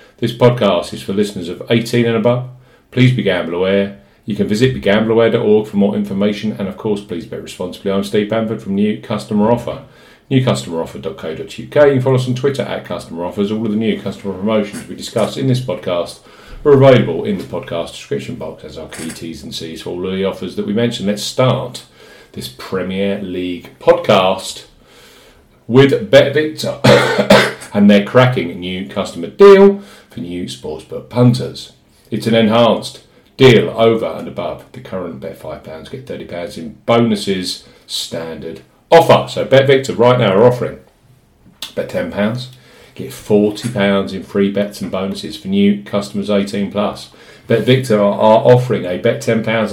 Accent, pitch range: British, 100-125 Hz